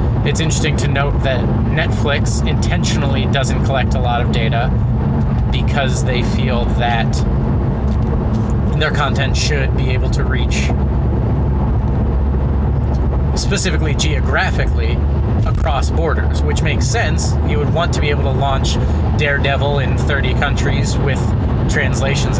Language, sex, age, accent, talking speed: English, male, 30-49, American, 120 wpm